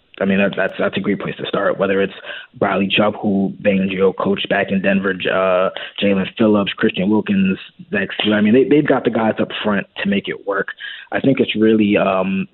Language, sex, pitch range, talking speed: English, male, 95-110 Hz, 210 wpm